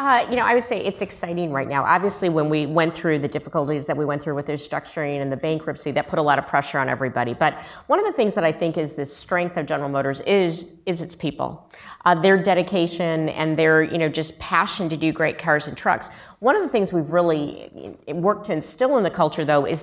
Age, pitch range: 40-59, 155-185 Hz